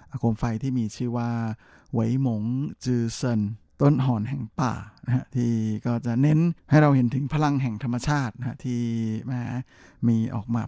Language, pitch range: Thai, 115-135 Hz